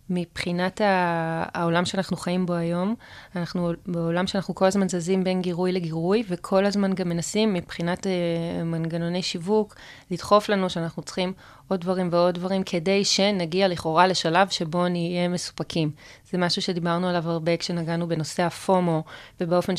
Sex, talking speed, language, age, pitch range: female, 140 wpm, Hebrew, 20-39, 170-190 Hz